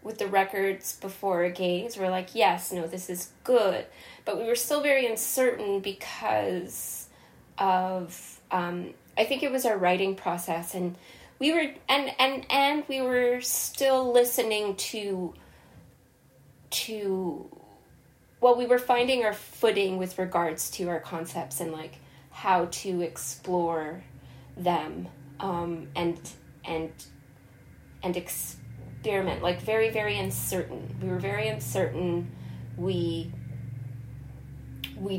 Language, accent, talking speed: English, American, 125 wpm